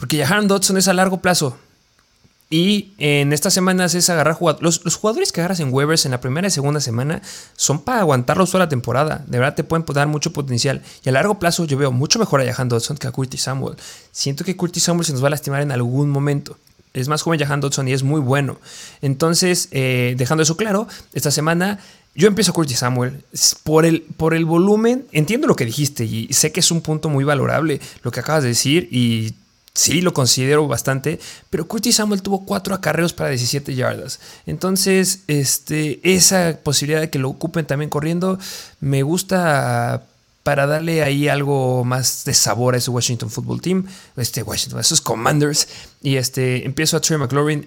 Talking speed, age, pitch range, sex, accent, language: 200 wpm, 30-49, 135-170 Hz, male, Mexican, Spanish